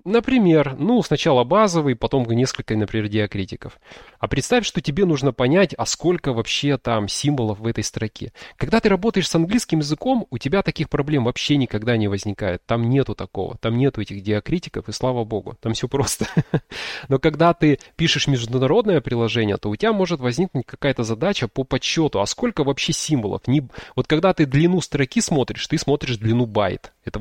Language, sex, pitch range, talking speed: Russian, male, 115-160 Hz, 175 wpm